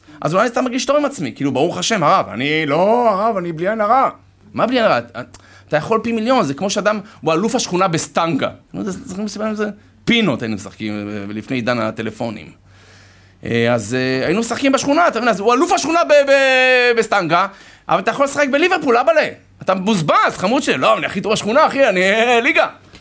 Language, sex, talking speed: Hebrew, male, 195 wpm